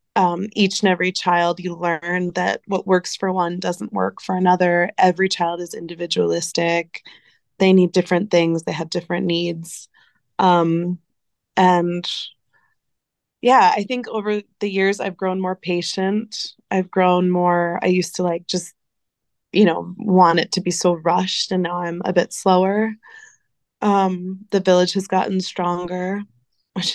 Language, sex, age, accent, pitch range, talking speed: English, female, 20-39, American, 175-200 Hz, 155 wpm